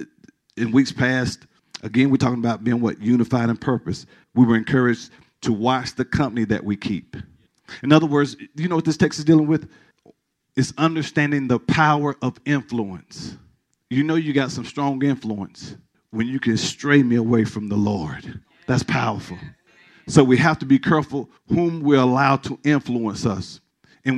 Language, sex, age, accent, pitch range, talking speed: English, male, 50-69, American, 120-150 Hz, 175 wpm